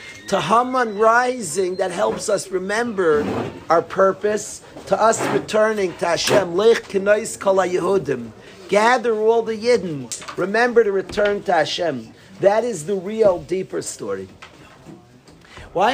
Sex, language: male, English